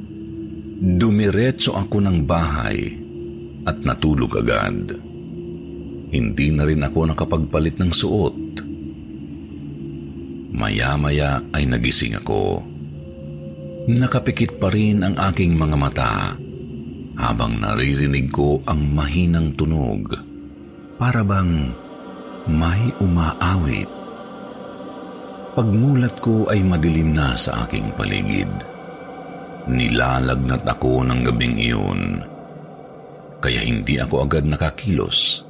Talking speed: 90 wpm